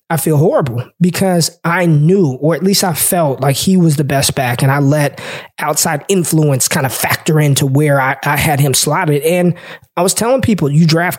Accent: American